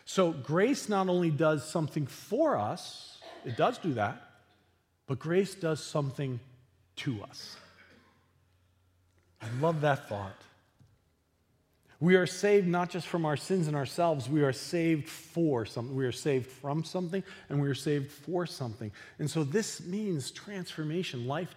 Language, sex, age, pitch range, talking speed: English, male, 40-59, 115-165 Hz, 150 wpm